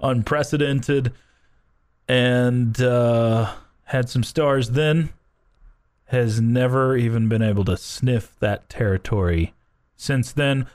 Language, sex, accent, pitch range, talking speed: English, male, American, 105-135 Hz, 100 wpm